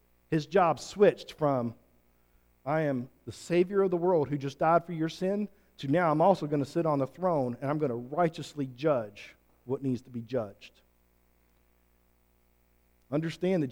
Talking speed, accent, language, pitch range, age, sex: 175 wpm, American, English, 130-210 Hz, 40-59, male